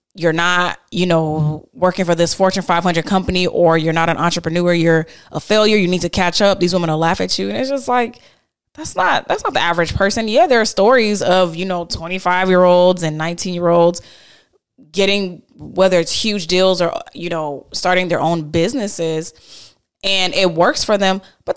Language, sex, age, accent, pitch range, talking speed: English, female, 20-39, American, 170-230 Hz, 190 wpm